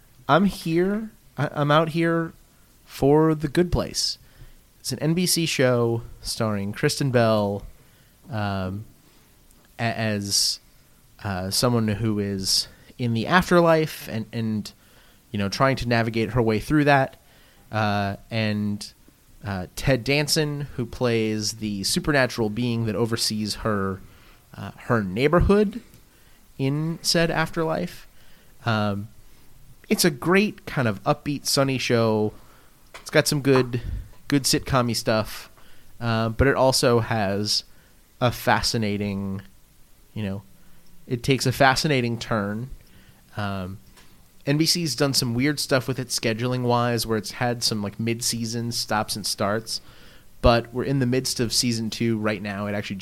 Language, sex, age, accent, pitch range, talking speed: English, male, 30-49, American, 105-145 Hz, 130 wpm